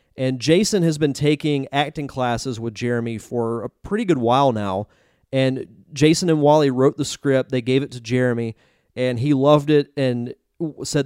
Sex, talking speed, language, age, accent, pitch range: male, 180 wpm, English, 30-49, American, 125-150 Hz